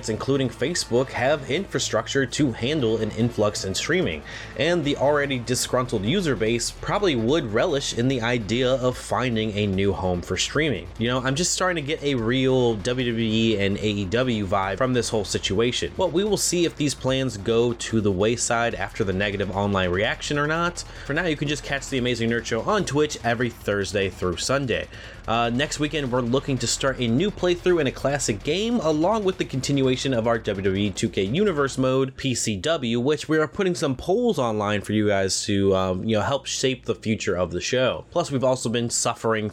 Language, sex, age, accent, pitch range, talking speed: English, male, 30-49, American, 105-140 Hz, 200 wpm